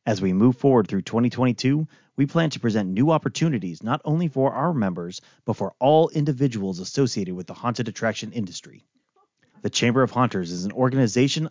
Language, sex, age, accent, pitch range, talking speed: English, male, 30-49, American, 110-150 Hz, 175 wpm